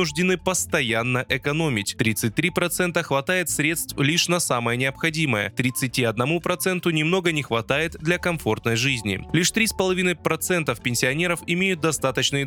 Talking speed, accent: 115 wpm, native